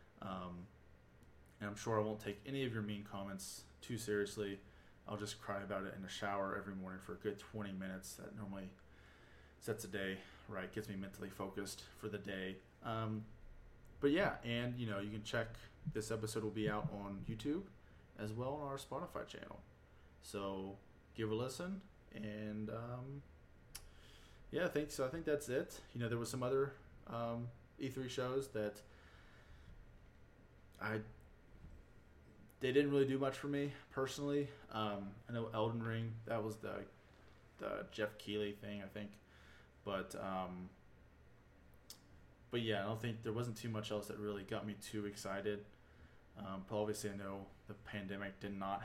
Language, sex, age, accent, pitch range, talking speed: English, male, 20-39, American, 95-115 Hz, 170 wpm